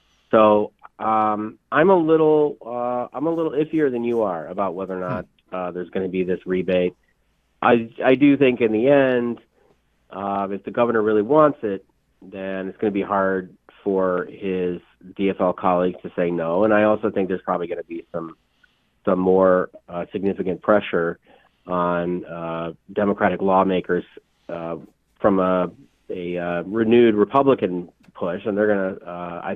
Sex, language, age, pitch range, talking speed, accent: male, English, 30-49, 90-110 Hz, 170 wpm, American